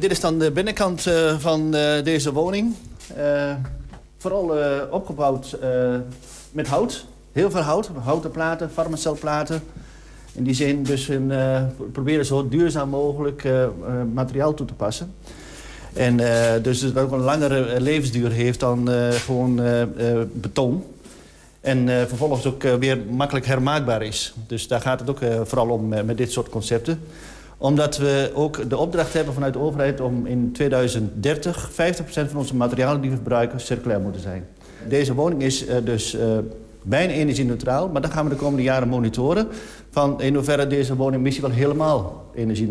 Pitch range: 125-155 Hz